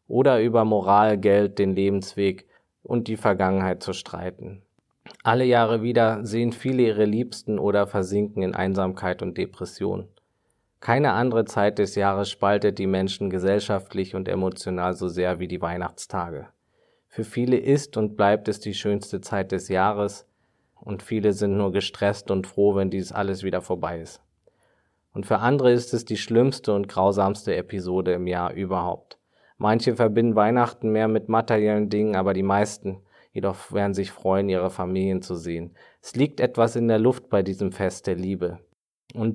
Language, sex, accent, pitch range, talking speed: German, male, German, 95-110 Hz, 165 wpm